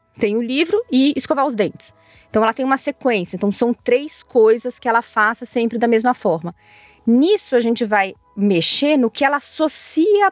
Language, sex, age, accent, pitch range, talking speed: Portuguese, female, 30-49, Brazilian, 210-275 Hz, 185 wpm